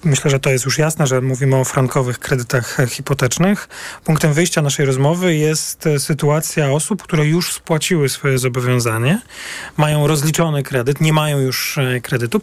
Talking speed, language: 150 wpm, Polish